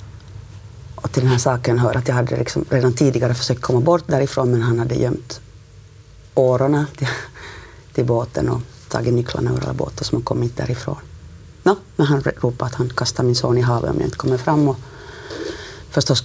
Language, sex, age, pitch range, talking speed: Swedish, female, 30-49, 115-135 Hz, 195 wpm